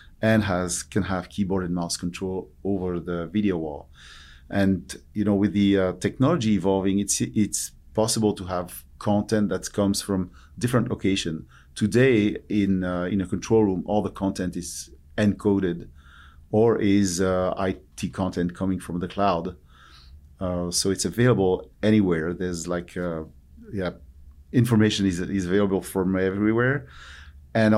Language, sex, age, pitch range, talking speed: English, male, 40-59, 85-105 Hz, 145 wpm